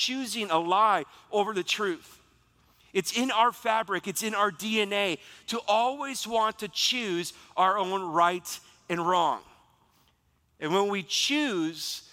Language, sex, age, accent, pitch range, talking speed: English, male, 40-59, American, 180-235 Hz, 140 wpm